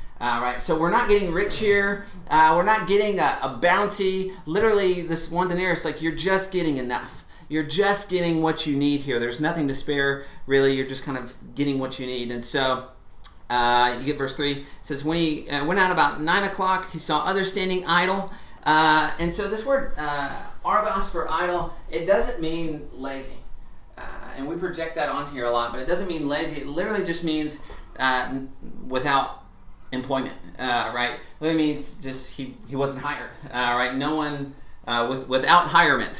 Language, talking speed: English, 190 wpm